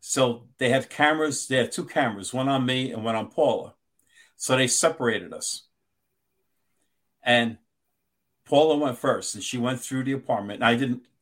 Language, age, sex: English, 50-69, male